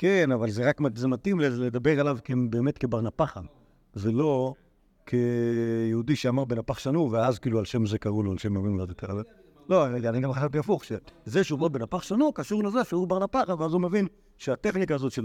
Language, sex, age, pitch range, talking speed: Hebrew, male, 50-69, 125-165 Hz, 175 wpm